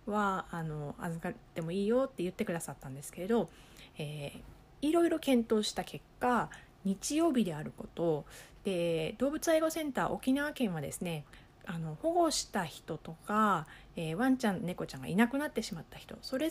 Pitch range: 170-270 Hz